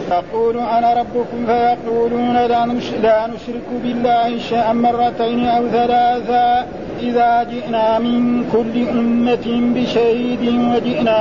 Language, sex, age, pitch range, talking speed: Arabic, male, 50-69, 230-240 Hz, 95 wpm